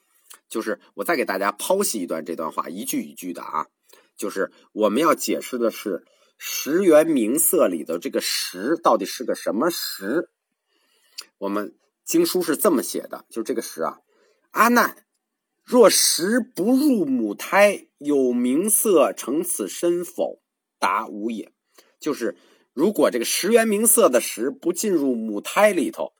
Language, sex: Chinese, male